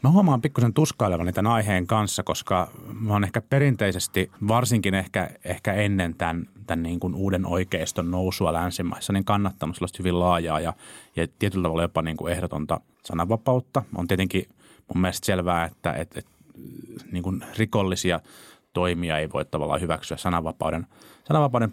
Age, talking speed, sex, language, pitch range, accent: 30-49, 155 wpm, male, Finnish, 85-110 Hz, native